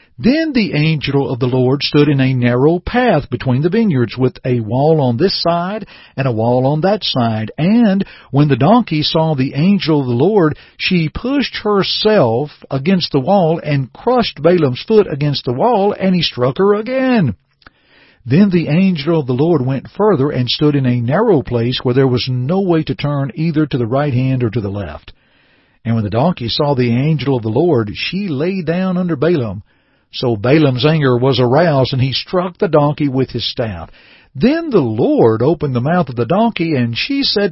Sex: male